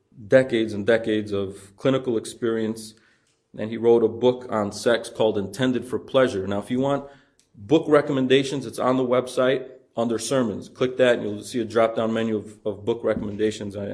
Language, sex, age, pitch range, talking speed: English, male, 30-49, 115-145 Hz, 180 wpm